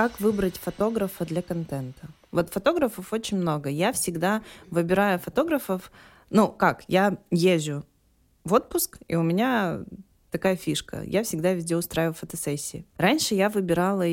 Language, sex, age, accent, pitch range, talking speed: Russian, female, 20-39, native, 160-210 Hz, 135 wpm